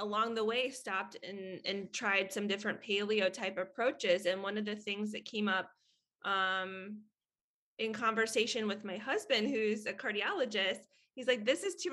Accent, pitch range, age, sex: American, 185-215 Hz, 20-39, female